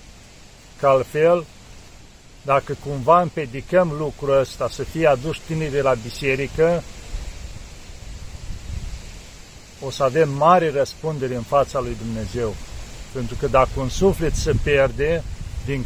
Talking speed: 115 wpm